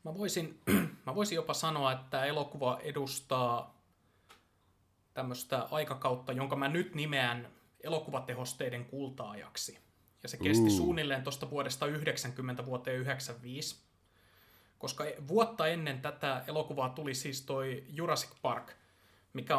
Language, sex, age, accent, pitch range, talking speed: Finnish, male, 20-39, native, 125-150 Hz, 115 wpm